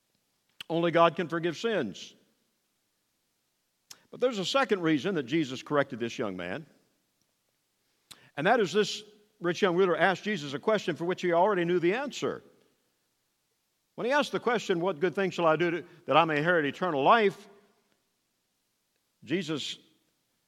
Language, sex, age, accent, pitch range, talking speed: English, male, 50-69, American, 140-200 Hz, 155 wpm